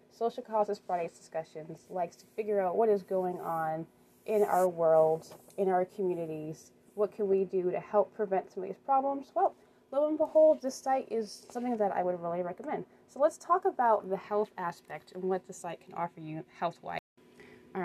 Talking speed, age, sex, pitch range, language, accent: 195 wpm, 20-39, female, 180-220 Hz, English, American